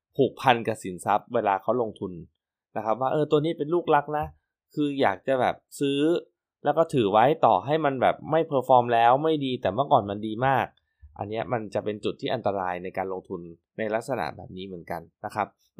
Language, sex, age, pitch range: Thai, male, 20-39, 100-135 Hz